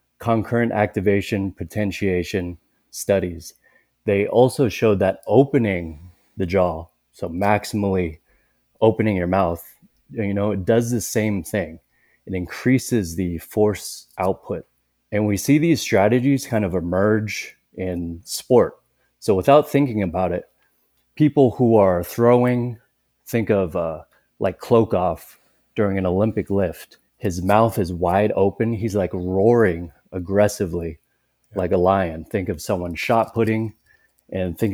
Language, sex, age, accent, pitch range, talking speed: English, male, 30-49, American, 90-115 Hz, 130 wpm